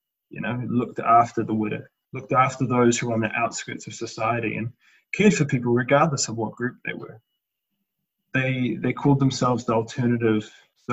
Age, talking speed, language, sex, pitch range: 20-39, 180 wpm, English, male, 110-125 Hz